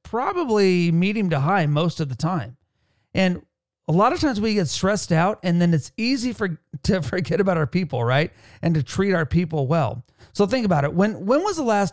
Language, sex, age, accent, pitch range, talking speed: English, male, 40-59, American, 155-200 Hz, 215 wpm